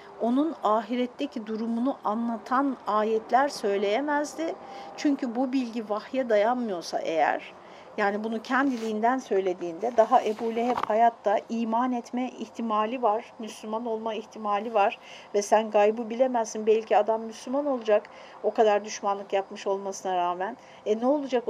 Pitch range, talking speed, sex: 205-265 Hz, 125 wpm, female